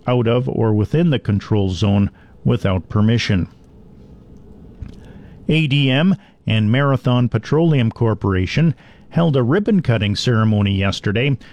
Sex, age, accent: male, 50-69, American